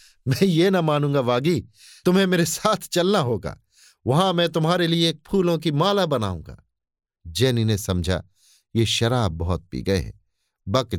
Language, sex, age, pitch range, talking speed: Hindi, male, 50-69, 100-145 Hz, 160 wpm